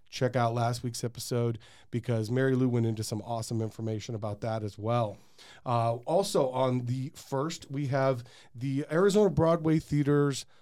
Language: English